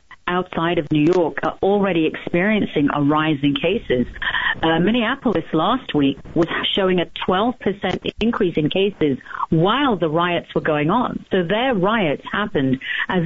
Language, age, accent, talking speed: English, 40-59, British, 150 wpm